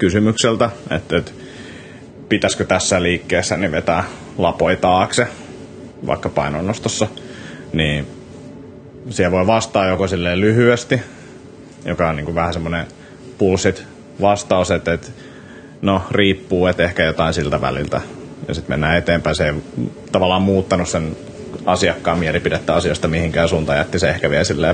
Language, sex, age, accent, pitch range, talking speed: Finnish, male, 30-49, native, 85-95 Hz, 130 wpm